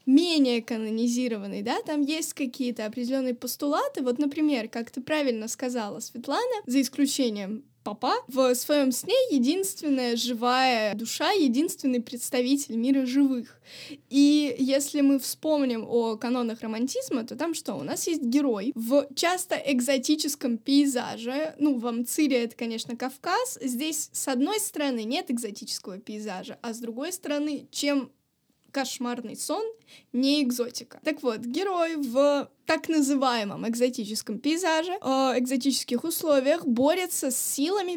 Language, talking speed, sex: Russian, 130 wpm, female